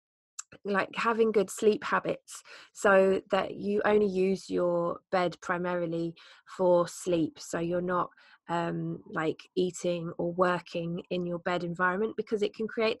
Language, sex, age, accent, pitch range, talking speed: English, female, 20-39, British, 165-190 Hz, 145 wpm